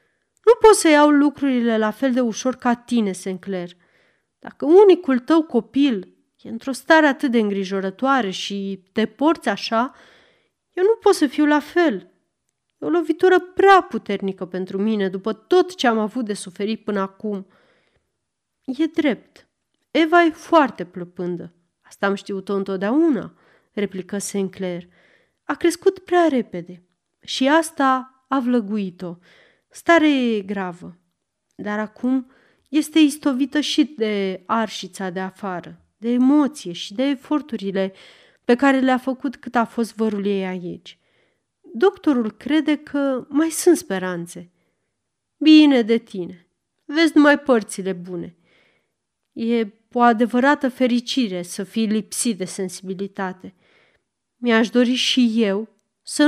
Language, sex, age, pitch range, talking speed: Romanian, female, 30-49, 195-290 Hz, 130 wpm